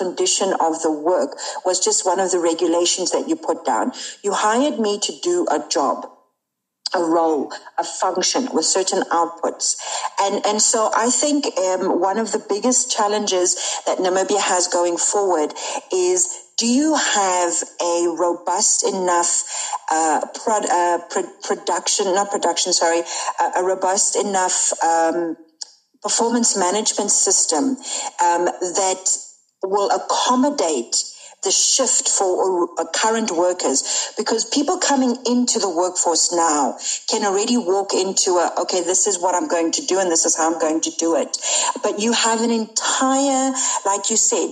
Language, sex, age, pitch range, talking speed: English, female, 50-69, 180-245 Hz, 150 wpm